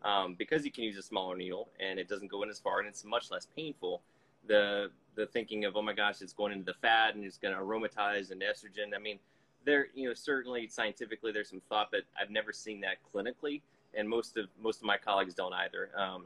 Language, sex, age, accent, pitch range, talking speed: English, male, 30-49, American, 100-155 Hz, 240 wpm